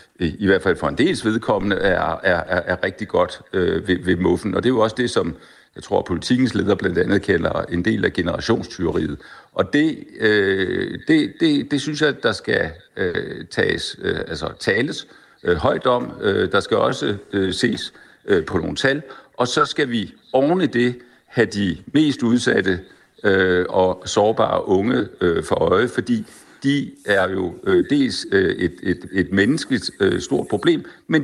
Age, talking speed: 60-79, 180 wpm